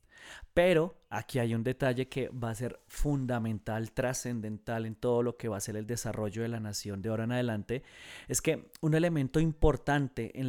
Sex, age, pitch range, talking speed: male, 30-49, 115-150 Hz, 190 wpm